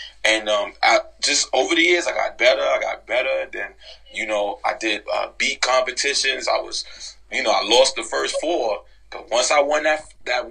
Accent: American